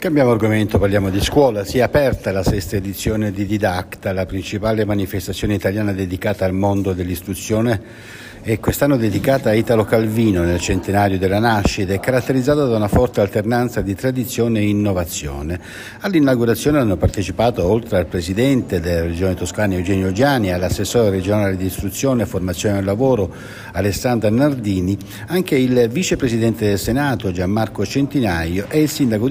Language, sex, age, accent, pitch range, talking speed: Italian, male, 60-79, native, 95-120 Hz, 145 wpm